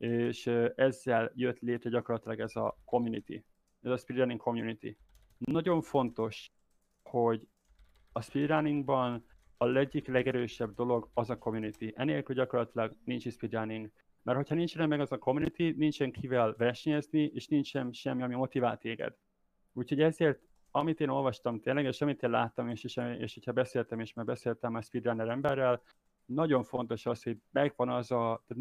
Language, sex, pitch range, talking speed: Hungarian, male, 115-130 Hz, 150 wpm